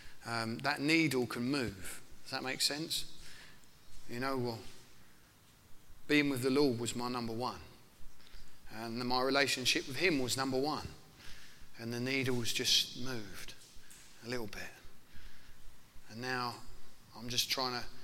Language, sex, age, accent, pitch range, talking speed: English, male, 30-49, British, 120-145 Hz, 145 wpm